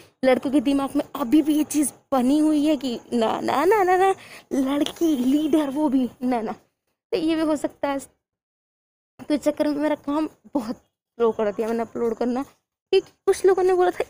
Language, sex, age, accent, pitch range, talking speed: Hindi, female, 20-39, native, 230-295 Hz, 210 wpm